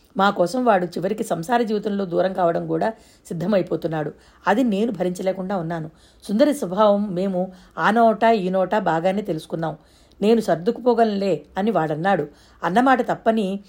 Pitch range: 180-225 Hz